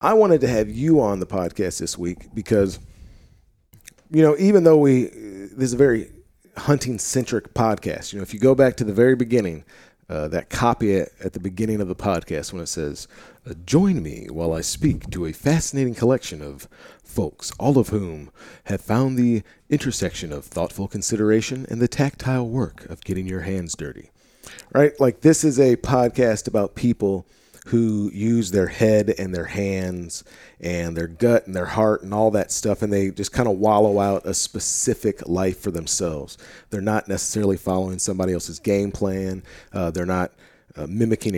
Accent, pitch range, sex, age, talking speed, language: American, 95-120 Hz, male, 40-59, 180 wpm, English